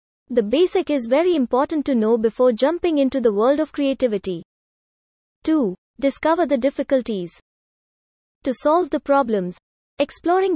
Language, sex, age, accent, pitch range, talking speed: English, female, 20-39, Indian, 235-300 Hz, 130 wpm